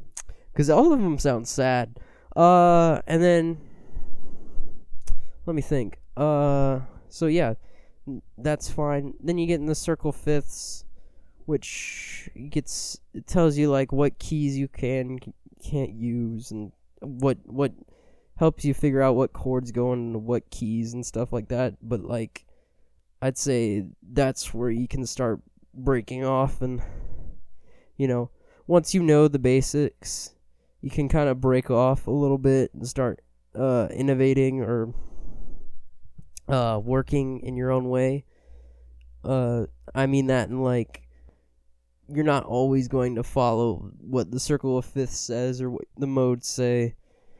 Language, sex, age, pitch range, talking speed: English, male, 20-39, 115-140 Hz, 145 wpm